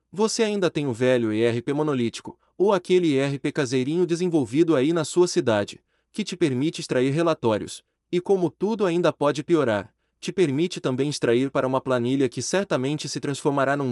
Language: Portuguese